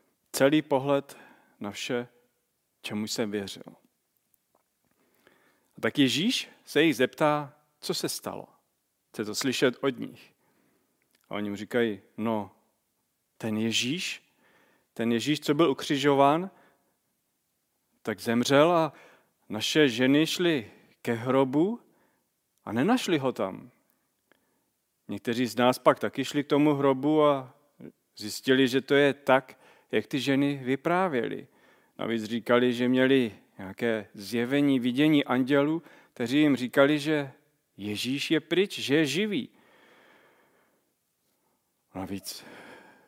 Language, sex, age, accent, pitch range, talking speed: Czech, male, 40-59, native, 110-145 Hz, 115 wpm